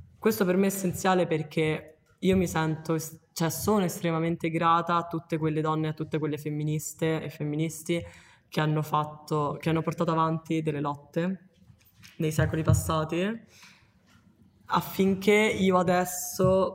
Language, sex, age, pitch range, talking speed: Italian, female, 20-39, 155-165 Hz, 130 wpm